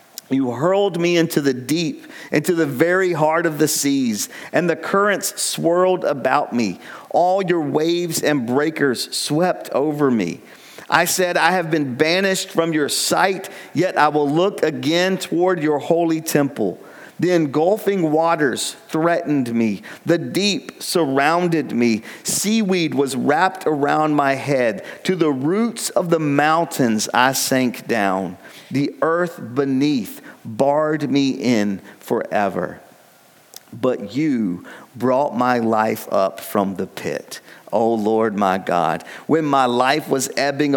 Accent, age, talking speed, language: American, 50-69, 140 wpm, English